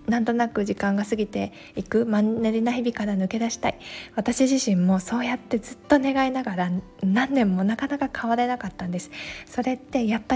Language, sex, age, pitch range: Japanese, female, 20-39, 190-235 Hz